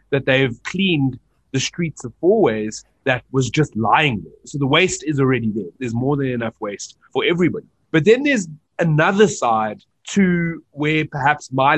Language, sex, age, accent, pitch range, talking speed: English, male, 30-49, South African, 125-155 Hz, 180 wpm